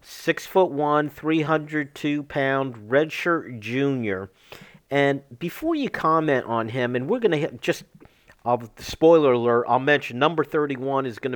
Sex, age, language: male, 50-69, English